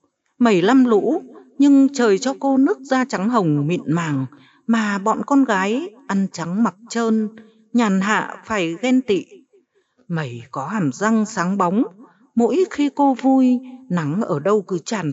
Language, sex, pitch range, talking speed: Vietnamese, female, 175-250 Hz, 165 wpm